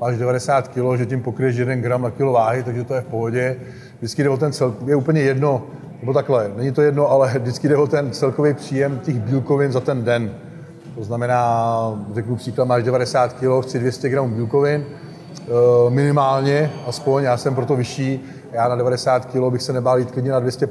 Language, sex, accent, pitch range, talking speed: Czech, male, native, 125-140 Hz, 195 wpm